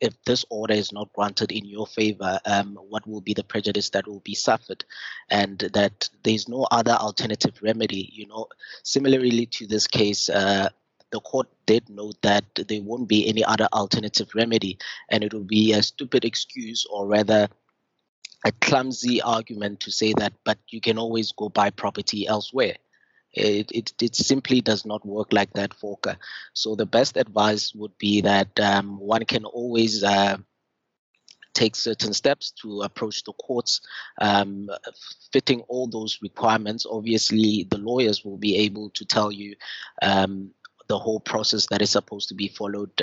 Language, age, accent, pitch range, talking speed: English, 20-39, South African, 100-110 Hz, 170 wpm